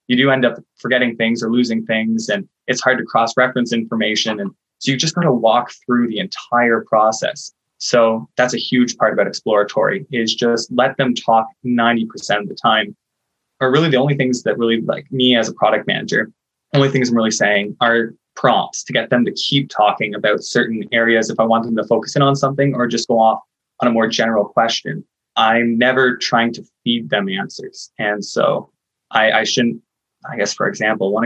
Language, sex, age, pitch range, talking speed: English, male, 20-39, 115-130 Hz, 200 wpm